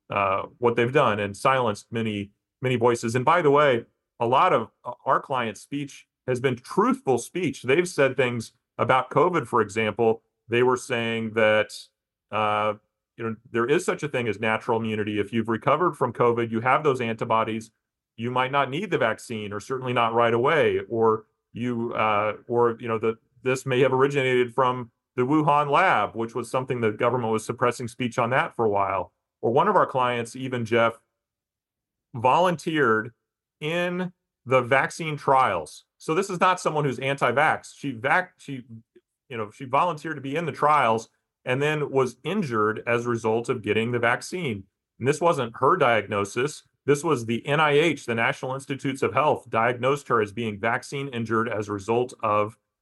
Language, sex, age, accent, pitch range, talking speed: English, male, 40-59, American, 110-135 Hz, 180 wpm